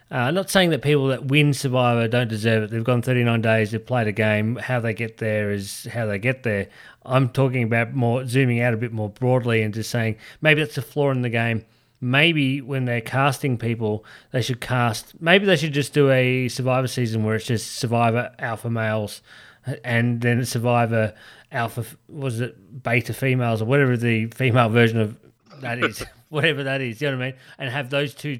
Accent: Australian